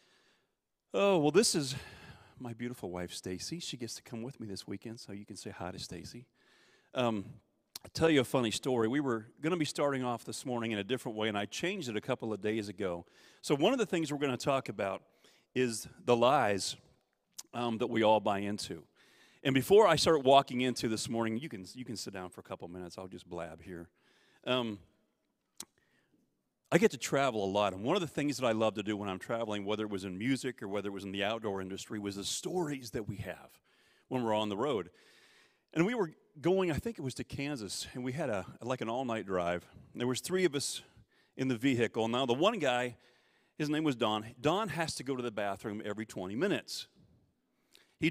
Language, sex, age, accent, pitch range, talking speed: English, male, 40-59, American, 105-140 Hz, 225 wpm